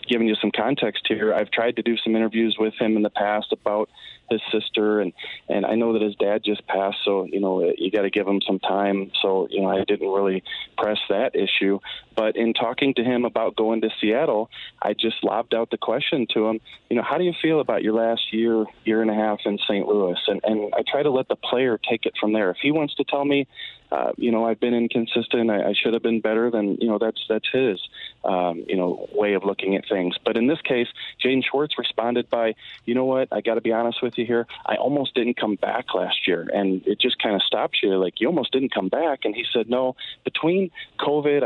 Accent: American